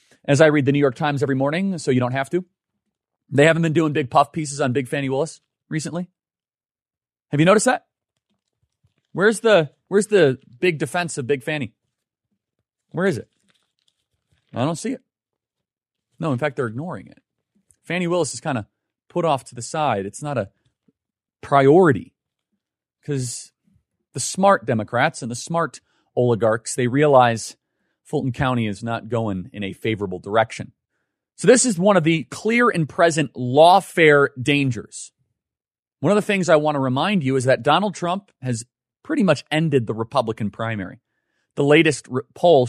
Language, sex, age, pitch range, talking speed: English, male, 30-49, 125-160 Hz, 165 wpm